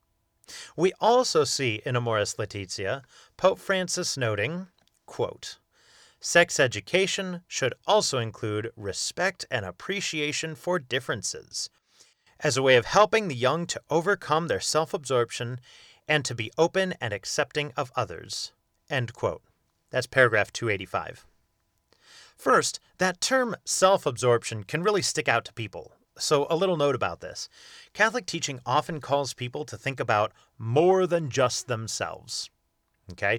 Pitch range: 115-180 Hz